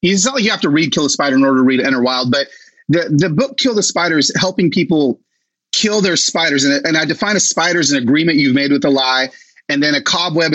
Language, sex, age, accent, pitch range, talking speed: English, male, 30-49, American, 150-225 Hz, 265 wpm